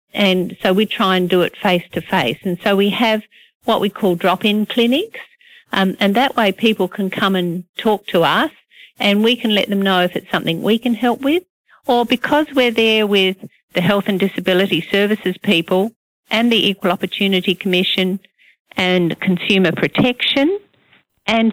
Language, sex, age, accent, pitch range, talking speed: English, female, 50-69, Australian, 175-225 Hz, 170 wpm